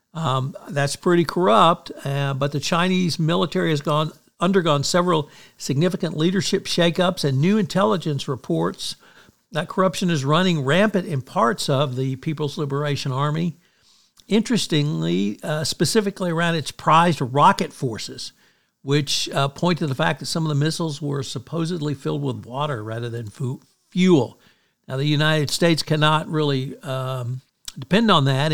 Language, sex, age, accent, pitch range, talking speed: English, male, 60-79, American, 130-165 Hz, 145 wpm